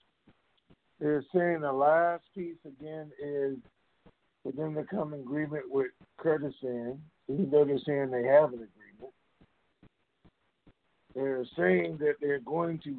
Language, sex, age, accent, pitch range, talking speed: English, male, 50-69, American, 130-165 Hz, 135 wpm